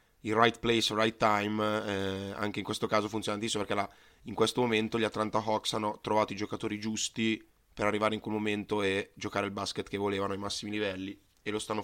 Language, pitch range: Italian, 105-115 Hz